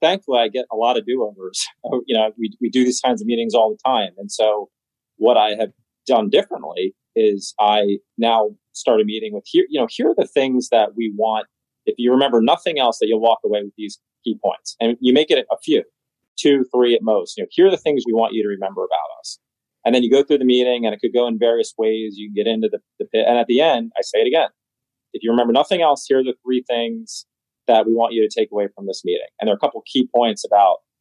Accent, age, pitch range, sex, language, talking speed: American, 30-49, 110-145 Hz, male, English, 265 wpm